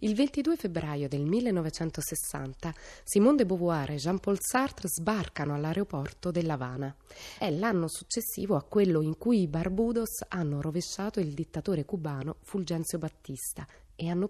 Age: 20-39